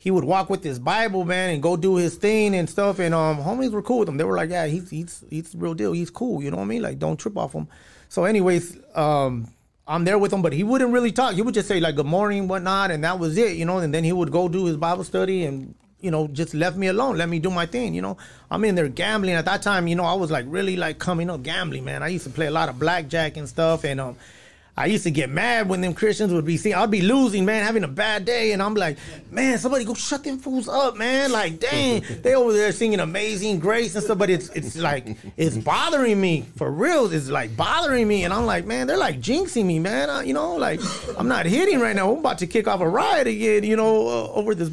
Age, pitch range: 30-49, 155-215 Hz